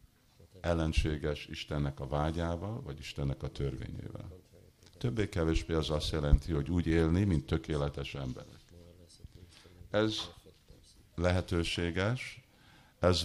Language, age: Hungarian, 50-69